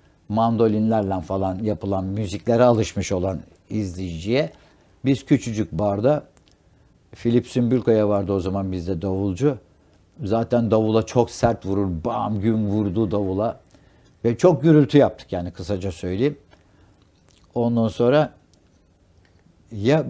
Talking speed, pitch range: 105 wpm, 95-130 Hz